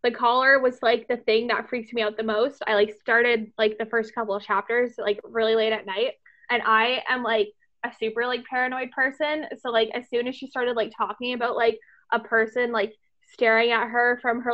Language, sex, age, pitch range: English, female, 20-39, 220-250 Hz